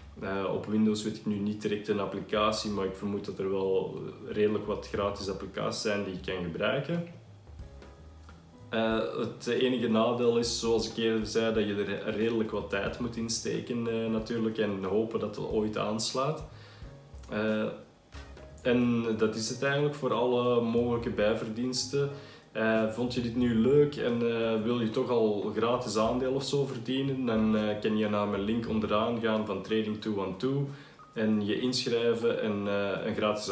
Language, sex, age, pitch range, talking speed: Dutch, male, 20-39, 105-120 Hz, 170 wpm